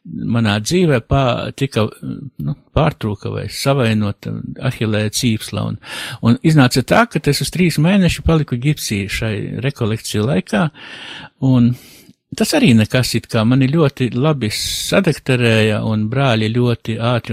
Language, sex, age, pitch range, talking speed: English, male, 60-79, 115-145 Hz, 120 wpm